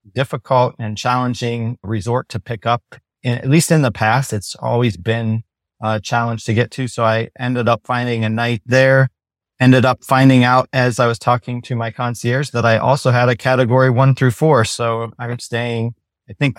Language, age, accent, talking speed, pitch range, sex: English, 30-49, American, 195 wpm, 110-125 Hz, male